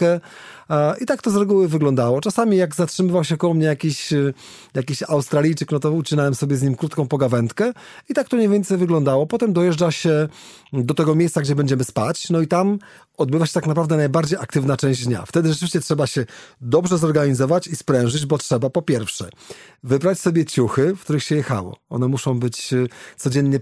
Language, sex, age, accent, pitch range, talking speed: Polish, male, 40-59, native, 135-170 Hz, 185 wpm